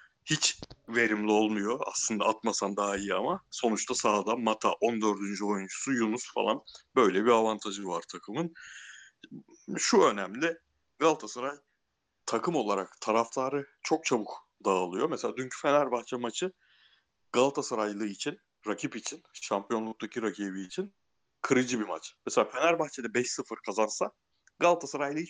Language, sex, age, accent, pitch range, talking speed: Turkish, male, 60-79, native, 110-155 Hz, 115 wpm